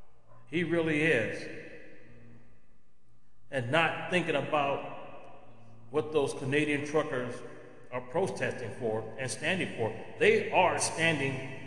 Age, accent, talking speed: 40-59, American, 105 wpm